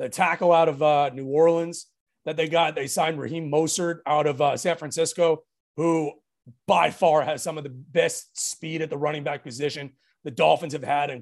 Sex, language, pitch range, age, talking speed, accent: male, English, 150-175 Hz, 30-49, 205 wpm, American